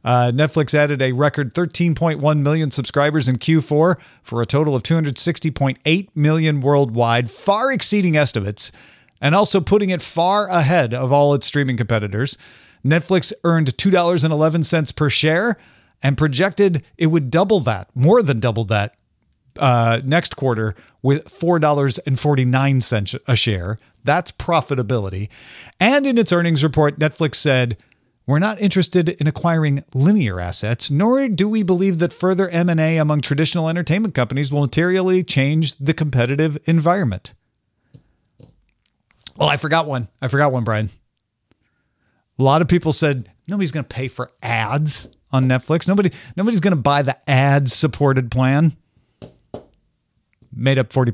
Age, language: 40-59, English